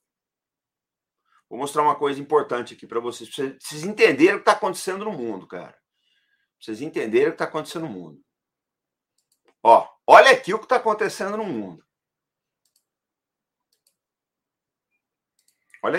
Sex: male